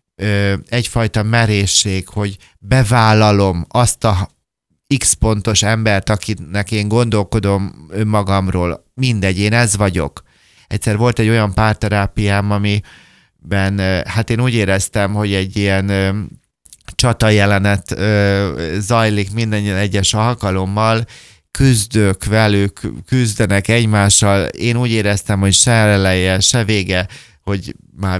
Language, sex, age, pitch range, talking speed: Hungarian, male, 30-49, 95-110 Hz, 100 wpm